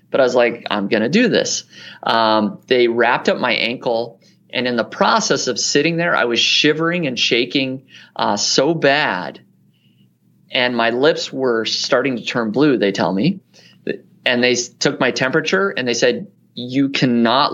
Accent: American